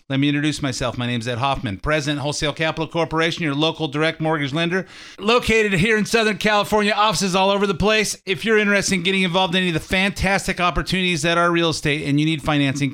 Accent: American